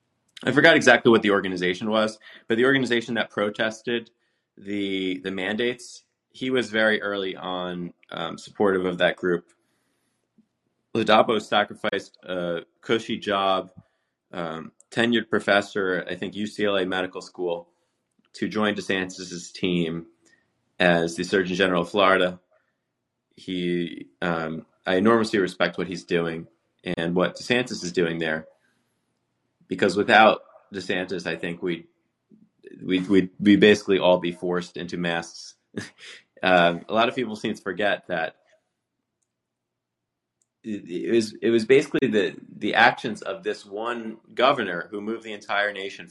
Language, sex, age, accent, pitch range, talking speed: English, male, 20-39, American, 90-110 Hz, 135 wpm